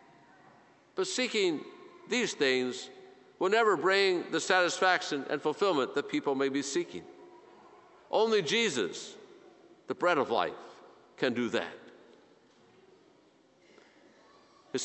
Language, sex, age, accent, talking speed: English, male, 50-69, American, 105 wpm